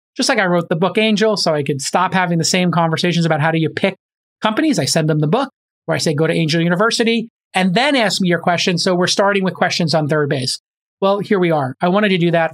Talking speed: 270 wpm